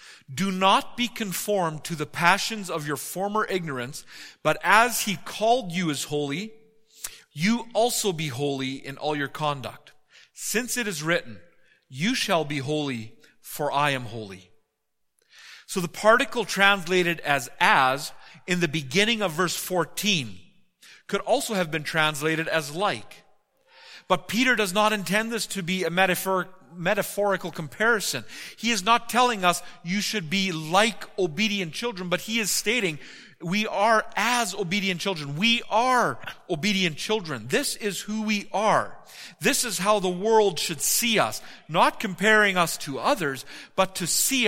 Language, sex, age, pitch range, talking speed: English, male, 40-59, 155-215 Hz, 150 wpm